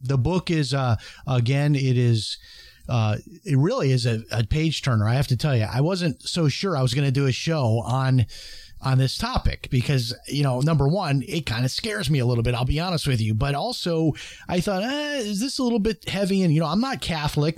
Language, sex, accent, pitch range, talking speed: English, male, American, 120-155 Hz, 240 wpm